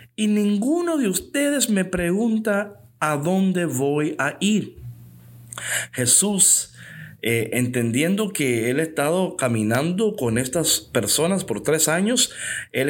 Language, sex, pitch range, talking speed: Spanish, male, 120-190 Hz, 120 wpm